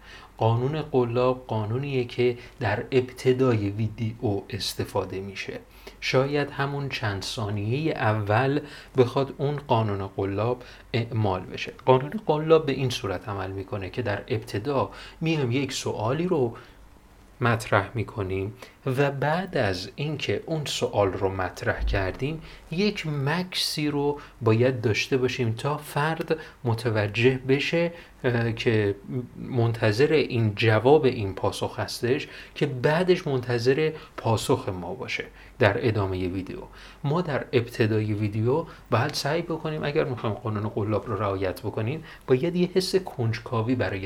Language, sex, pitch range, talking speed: Persian, male, 105-140 Hz, 125 wpm